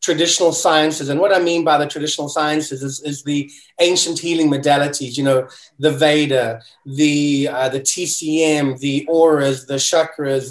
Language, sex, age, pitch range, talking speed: English, male, 30-49, 145-170 Hz, 160 wpm